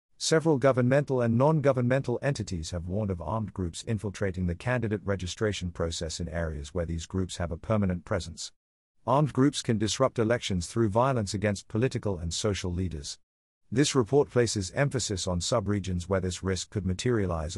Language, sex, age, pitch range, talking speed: English, male, 50-69, 90-125 Hz, 160 wpm